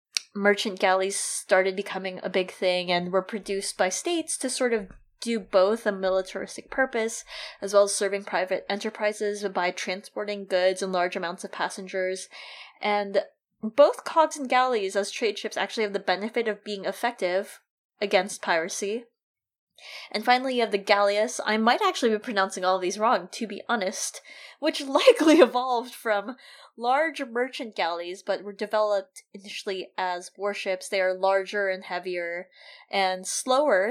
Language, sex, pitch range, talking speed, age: English, female, 185-230 Hz, 155 wpm, 20-39